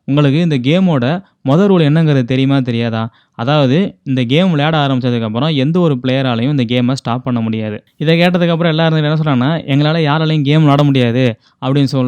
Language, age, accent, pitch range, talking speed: Tamil, 20-39, native, 130-160 Hz, 160 wpm